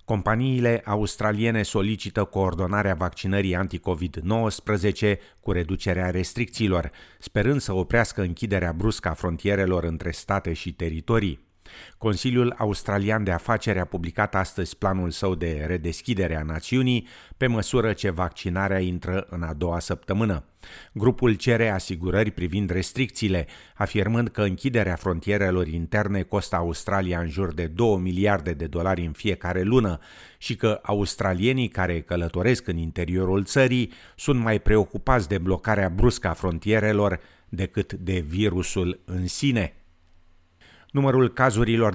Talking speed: 125 wpm